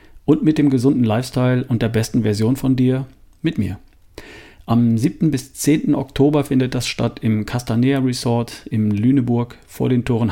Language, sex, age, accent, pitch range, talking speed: German, male, 40-59, German, 105-140 Hz, 170 wpm